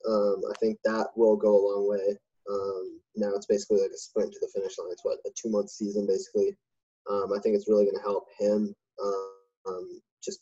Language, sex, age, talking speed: English, male, 10-29, 220 wpm